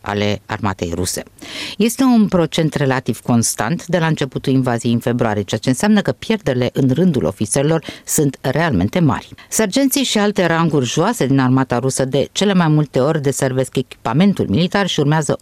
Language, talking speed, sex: Romanian, 165 wpm, female